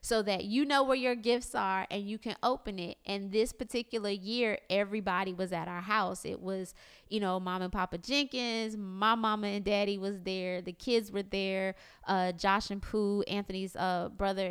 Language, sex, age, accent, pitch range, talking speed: English, female, 20-39, American, 200-270 Hz, 195 wpm